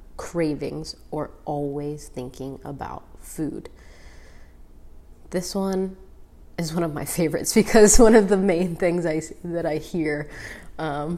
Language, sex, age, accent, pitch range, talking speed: English, female, 20-39, American, 145-190 Hz, 125 wpm